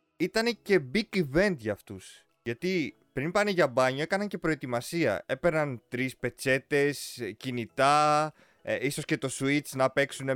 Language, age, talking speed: Greek, 20-39, 145 wpm